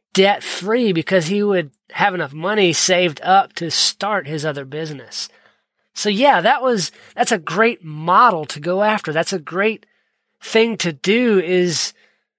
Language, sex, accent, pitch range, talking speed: English, male, American, 170-210 Hz, 160 wpm